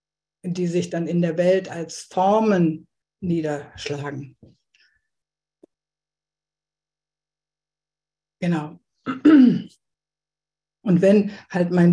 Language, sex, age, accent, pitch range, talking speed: German, female, 50-69, German, 170-205 Hz, 70 wpm